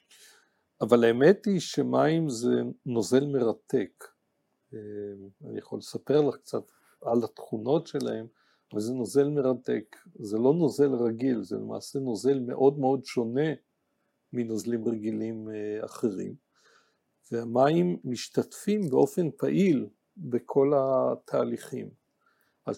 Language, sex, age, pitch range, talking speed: Hebrew, male, 50-69, 120-150 Hz, 105 wpm